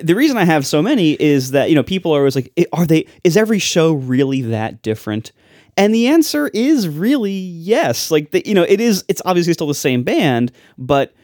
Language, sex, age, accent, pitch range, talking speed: English, male, 30-49, American, 115-170 Hz, 215 wpm